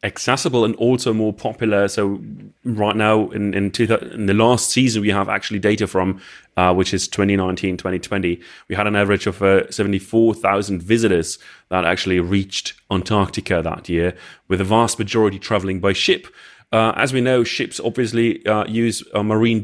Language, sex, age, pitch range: English, male, 30-49, 95-115 Hz